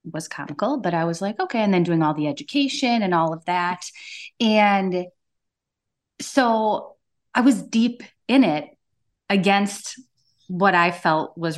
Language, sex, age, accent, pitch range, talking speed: English, female, 30-49, American, 160-215 Hz, 150 wpm